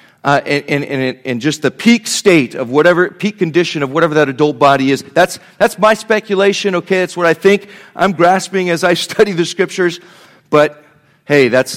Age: 40-59